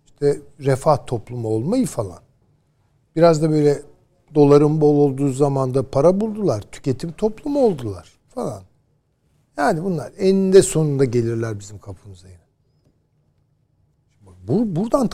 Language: Turkish